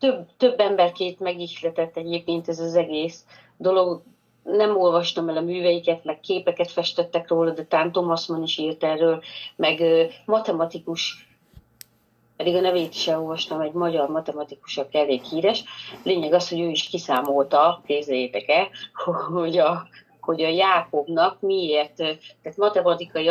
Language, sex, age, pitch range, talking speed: Hungarian, female, 30-49, 155-190 Hz, 135 wpm